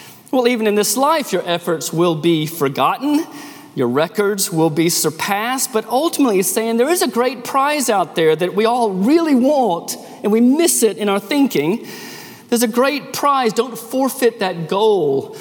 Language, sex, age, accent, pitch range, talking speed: English, male, 40-59, American, 175-240 Hz, 180 wpm